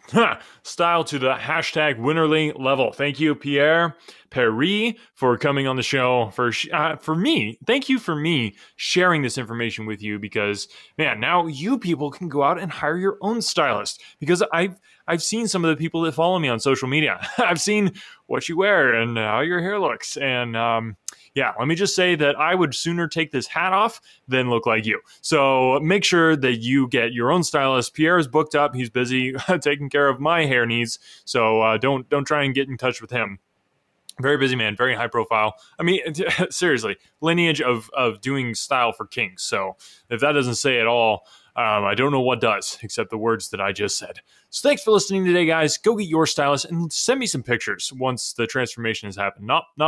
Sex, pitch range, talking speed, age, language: male, 120-165 Hz, 210 wpm, 20-39, English